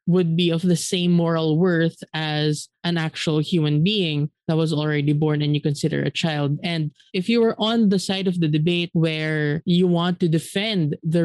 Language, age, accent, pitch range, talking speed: English, 20-39, Filipino, 160-185 Hz, 195 wpm